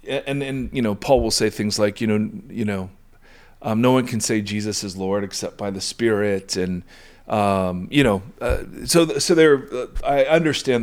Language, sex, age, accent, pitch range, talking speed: English, male, 40-59, American, 105-140 Hz, 200 wpm